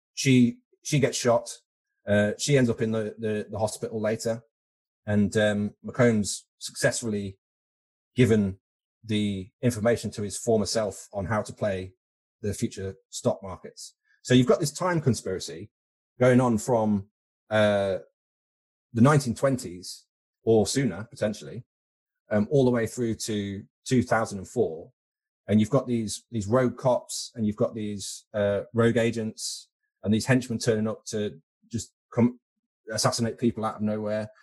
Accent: British